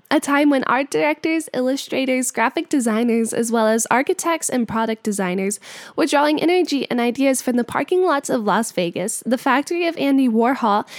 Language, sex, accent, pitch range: English, female, American, 230-300 Hz